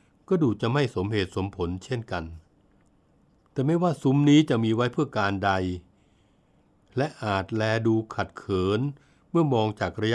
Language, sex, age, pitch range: Thai, male, 60-79, 100-125 Hz